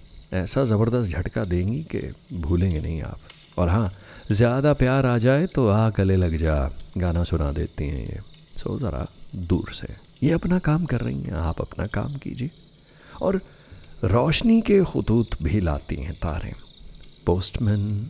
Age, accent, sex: 50-69, native, male